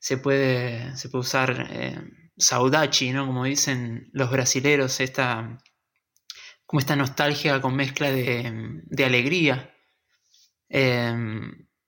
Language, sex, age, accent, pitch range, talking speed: Spanish, male, 20-39, Argentinian, 125-145 Hz, 110 wpm